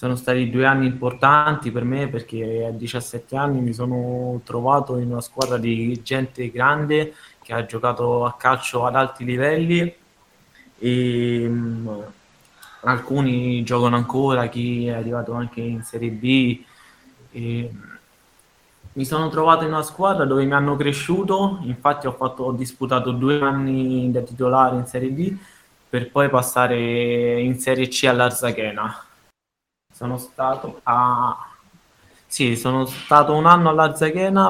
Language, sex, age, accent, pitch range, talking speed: Italian, male, 20-39, native, 120-140 Hz, 135 wpm